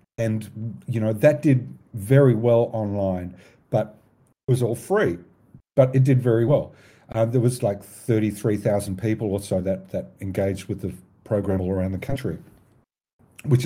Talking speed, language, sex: 165 wpm, English, male